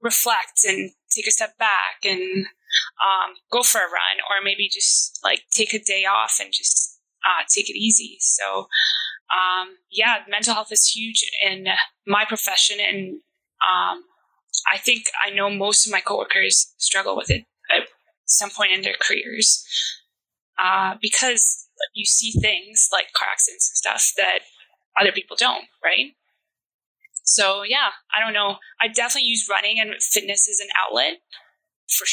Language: English